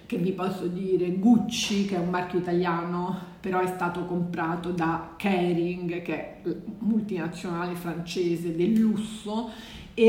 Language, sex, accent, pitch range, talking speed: Italian, female, native, 170-205 Hz, 135 wpm